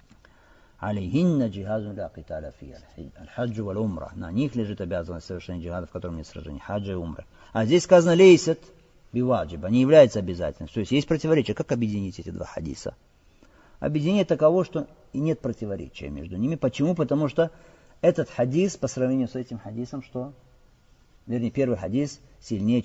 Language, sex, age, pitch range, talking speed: Russian, male, 50-69, 105-155 Hz, 140 wpm